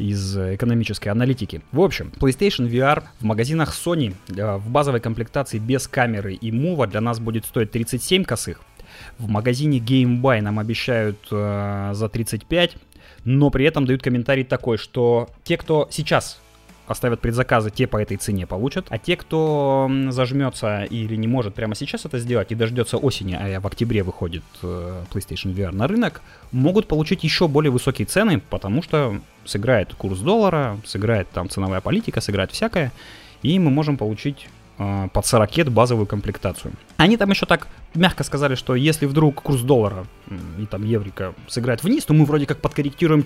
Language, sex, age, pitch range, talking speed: Russian, male, 20-39, 105-145 Hz, 160 wpm